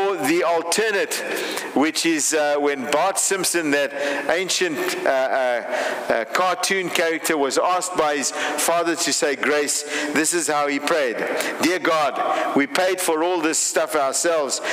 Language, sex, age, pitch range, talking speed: English, male, 50-69, 150-190 Hz, 150 wpm